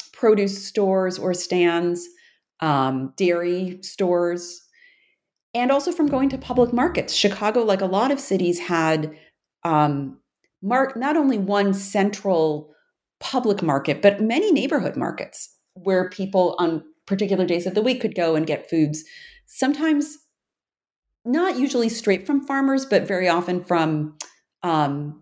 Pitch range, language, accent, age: 160-225 Hz, English, American, 40-59